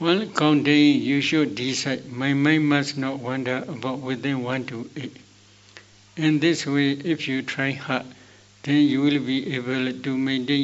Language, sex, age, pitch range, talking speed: Vietnamese, male, 60-79, 120-140 Hz, 170 wpm